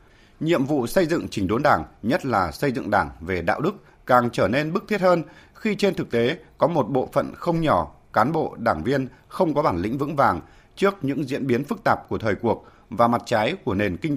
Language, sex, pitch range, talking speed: Vietnamese, male, 120-165 Hz, 235 wpm